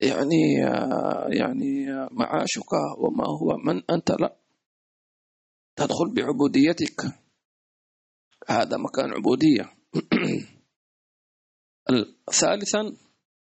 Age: 40-59